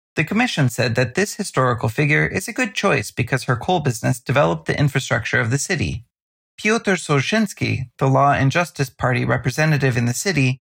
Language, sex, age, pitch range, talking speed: English, male, 30-49, 130-175 Hz, 180 wpm